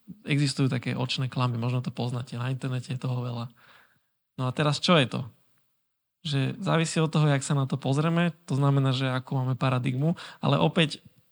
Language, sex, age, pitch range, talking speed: Slovak, male, 20-39, 130-150 Hz, 185 wpm